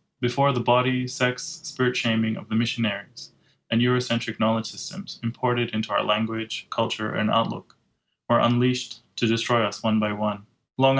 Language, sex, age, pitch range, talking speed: English, male, 20-39, 110-125 Hz, 160 wpm